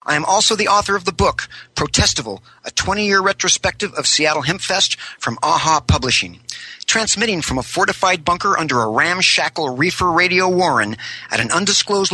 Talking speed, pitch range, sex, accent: 160 wpm, 140-195 Hz, male, American